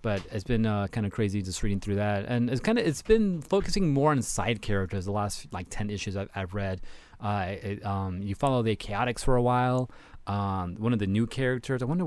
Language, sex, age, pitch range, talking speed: English, male, 30-49, 95-125 Hz, 240 wpm